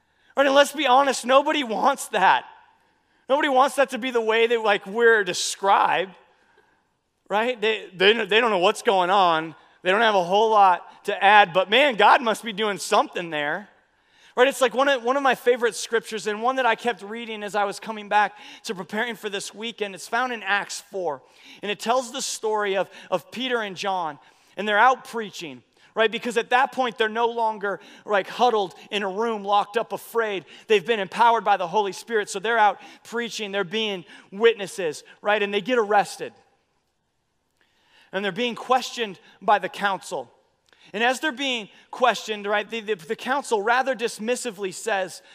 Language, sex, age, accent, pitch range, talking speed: English, male, 30-49, American, 200-255 Hz, 190 wpm